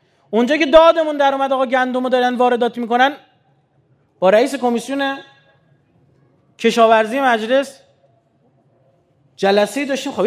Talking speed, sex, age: 110 wpm, male, 30-49